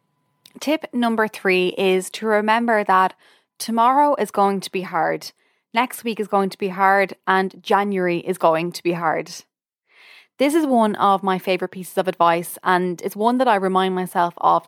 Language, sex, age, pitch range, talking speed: English, female, 20-39, 180-225 Hz, 180 wpm